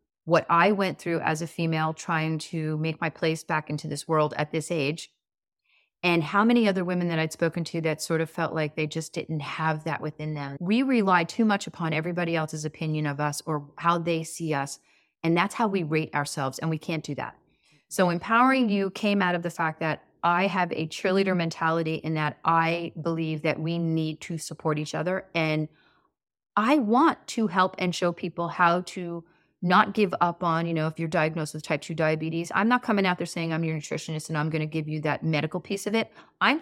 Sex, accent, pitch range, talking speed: female, American, 160-185 Hz, 220 wpm